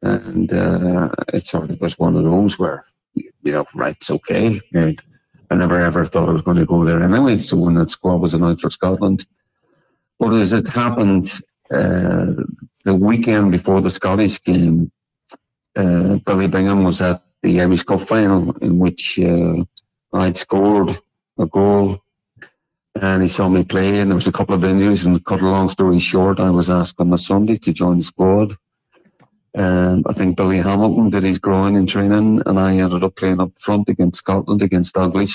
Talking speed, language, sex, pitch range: 190 wpm, English, male, 90-100 Hz